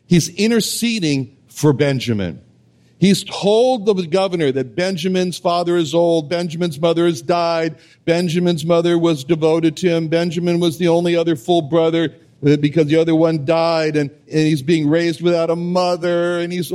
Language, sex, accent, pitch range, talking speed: English, male, American, 145-180 Hz, 160 wpm